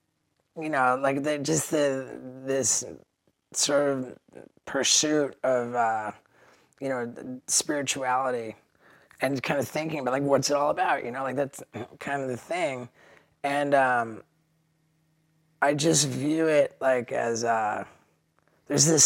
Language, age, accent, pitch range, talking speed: English, 20-39, American, 120-145 Hz, 130 wpm